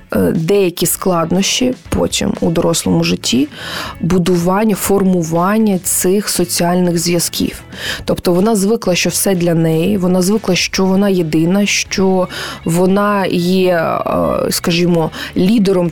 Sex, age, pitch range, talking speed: female, 20-39, 180-220 Hz, 105 wpm